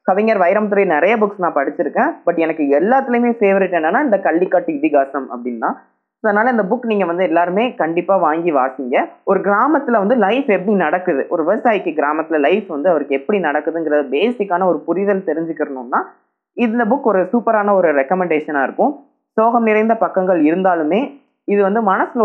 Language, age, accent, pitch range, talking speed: Tamil, 20-39, native, 155-215 Hz, 160 wpm